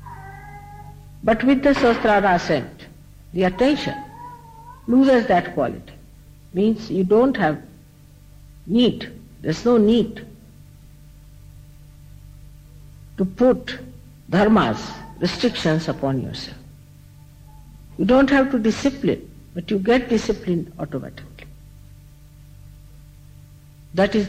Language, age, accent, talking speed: English, 60-79, Indian, 90 wpm